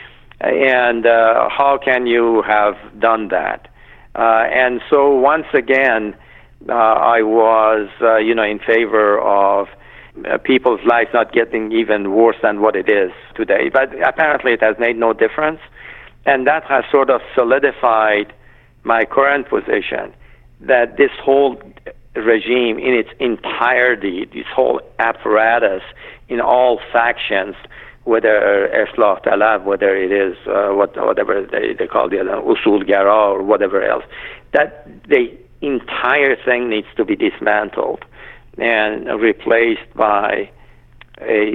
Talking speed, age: 135 wpm, 50-69